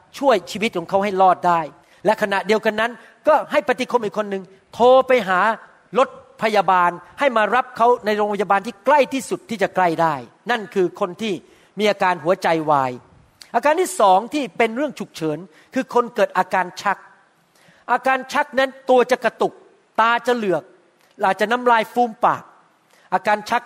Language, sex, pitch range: Thai, male, 195-250 Hz